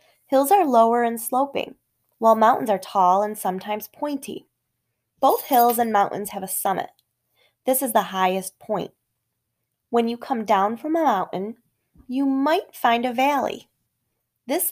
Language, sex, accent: English, female, American